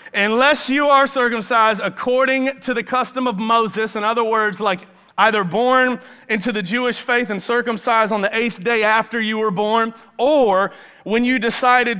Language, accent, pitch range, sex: English, American, 210-250 Hz, male